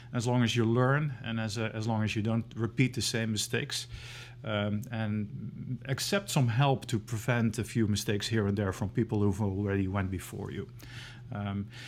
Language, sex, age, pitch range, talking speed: English, male, 40-59, 110-125 Hz, 190 wpm